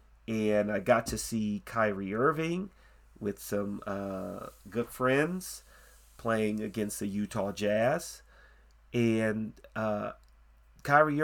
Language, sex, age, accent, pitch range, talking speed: English, male, 40-59, American, 105-145 Hz, 105 wpm